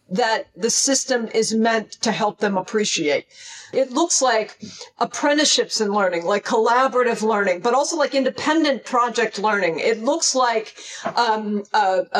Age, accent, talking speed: 50-69, American, 145 wpm